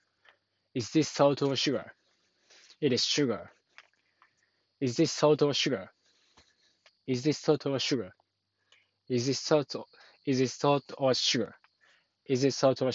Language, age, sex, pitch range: Japanese, 20-39, male, 120-140 Hz